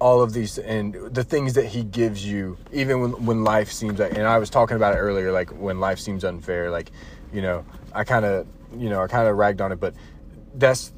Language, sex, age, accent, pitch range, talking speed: English, male, 30-49, American, 80-110 Hz, 240 wpm